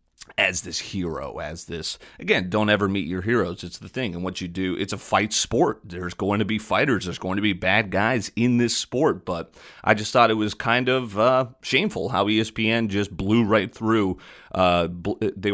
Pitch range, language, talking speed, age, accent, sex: 90-110 Hz, English, 210 wpm, 30-49, American, male